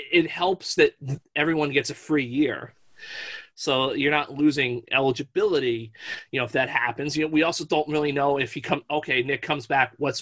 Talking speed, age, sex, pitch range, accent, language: 195 wpm, 30-49, male, 135-160 Hz, American, English